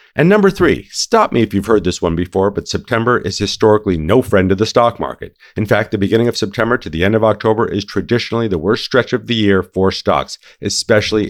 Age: 50-69